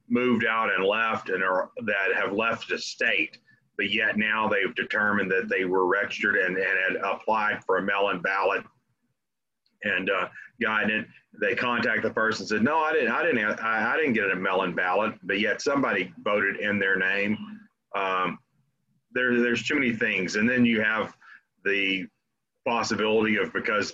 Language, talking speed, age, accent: English, 175 wpm, 40-59, American